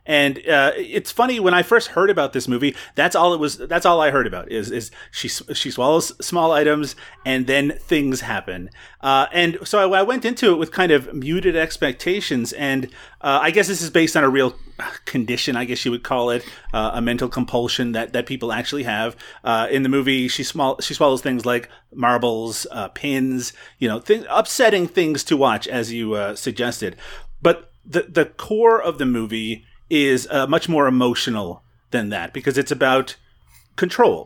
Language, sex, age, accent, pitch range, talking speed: English, male, 30-49, American, 125-150 Hz, 195 wpm